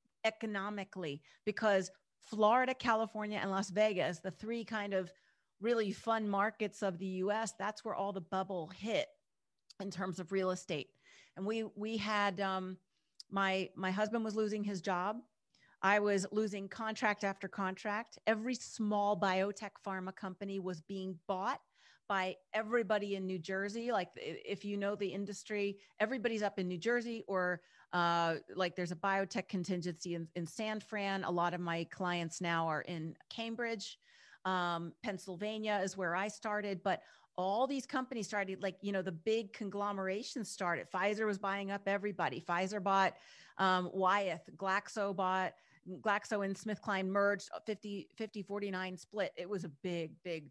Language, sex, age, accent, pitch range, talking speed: English, female, 40-59, American, 185-215 Hz, 155 wpm